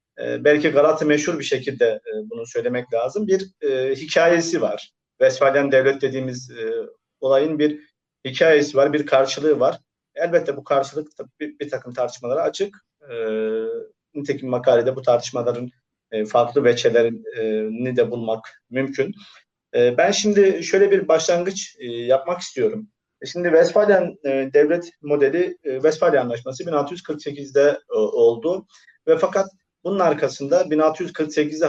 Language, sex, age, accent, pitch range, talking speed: Turkish, male, 40-59, native, 135-200 Hz, 130 wpm